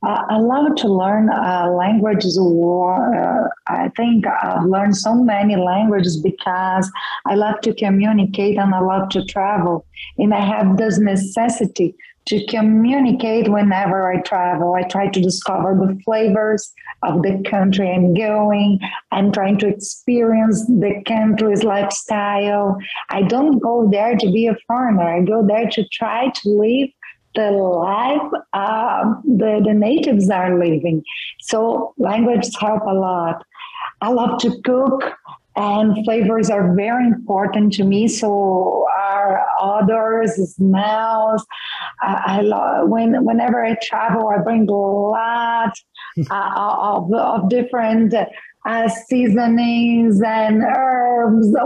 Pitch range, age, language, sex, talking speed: 195-230 Hz, 30-49, English, female, 130 wpm